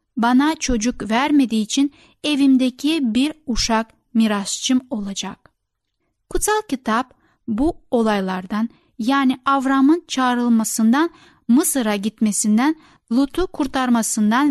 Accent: native